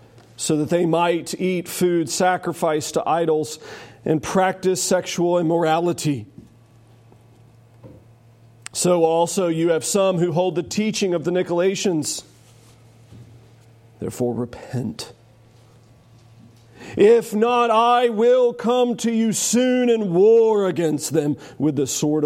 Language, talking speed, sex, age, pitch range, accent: English, 115 wpm, male, 40-59, 115-185 Hz, American